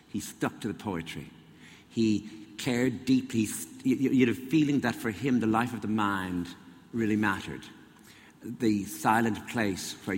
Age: 60-79